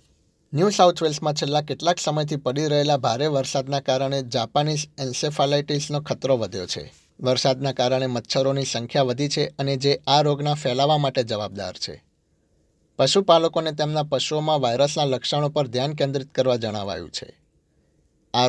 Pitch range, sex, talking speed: 125-145 Hz, male, 135 wpm